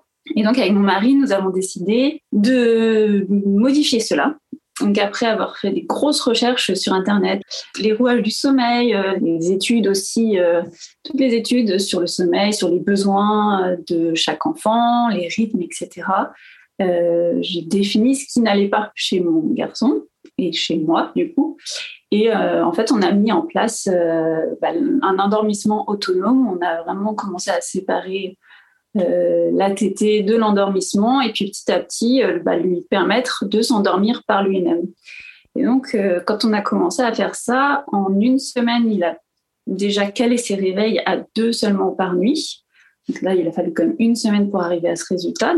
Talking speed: 170 wpm